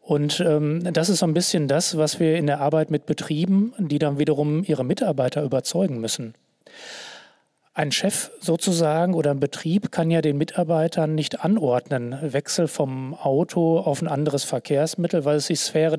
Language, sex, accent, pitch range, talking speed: German, male, German, 145-170 Hz, 170 wpm